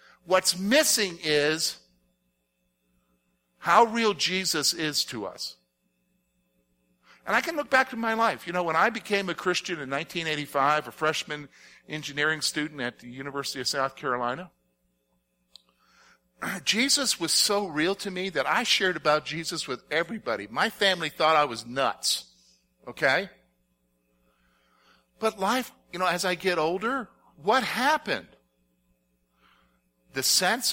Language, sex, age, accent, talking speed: English, male, 50-69, American, 135 wpm